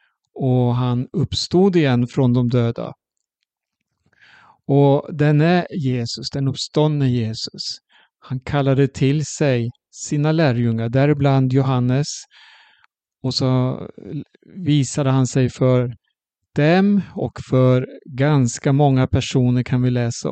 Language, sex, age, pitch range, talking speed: Swedish, male, 50-69, 125-150 Hz, 110 wpm